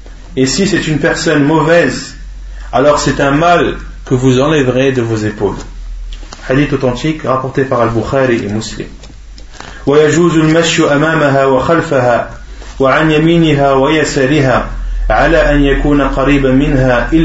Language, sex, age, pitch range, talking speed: French, male, 30-49, 125-150 Hz, 65 wpm